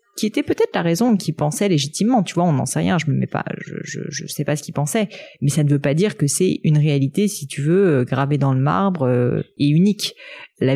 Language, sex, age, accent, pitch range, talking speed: French, female, 30-49, French, 140-185 Hz, 260 wpm